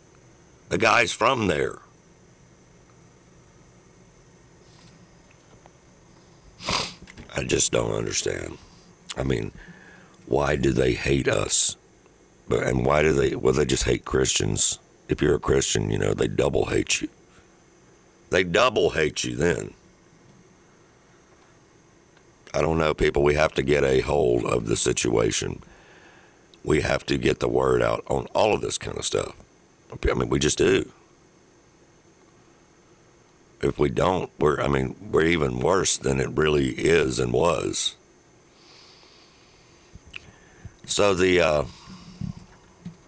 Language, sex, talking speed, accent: English, male, 125 wpm, American